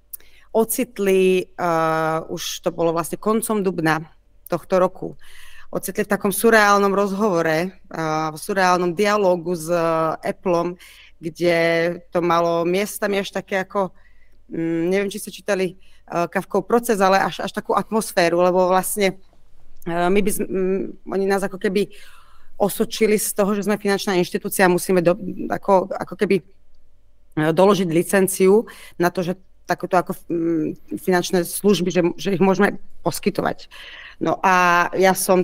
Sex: female